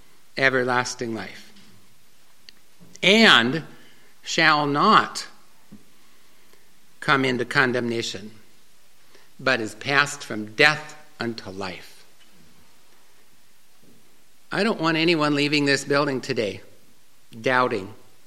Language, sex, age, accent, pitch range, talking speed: English, male, 60-79, American, 120-155 Hz, 80 wpm